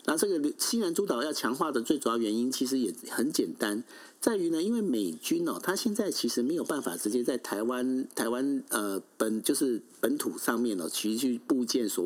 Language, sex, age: Chinese, male, 50-69